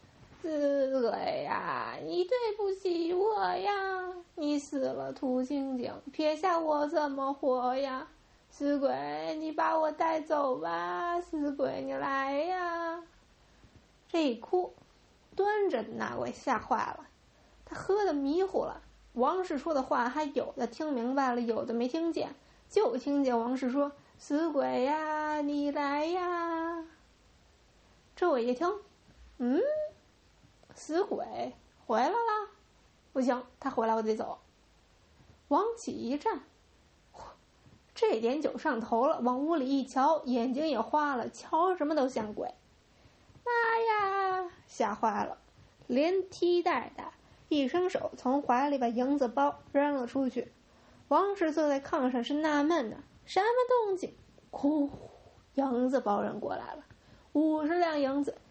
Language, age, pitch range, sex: English, 20-39, 265-345 Hz, female